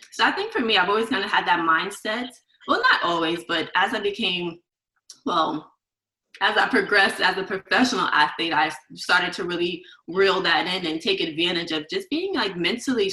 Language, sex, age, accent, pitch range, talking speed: English, female, 20-39, American, 175-240 Hz, 190 wpm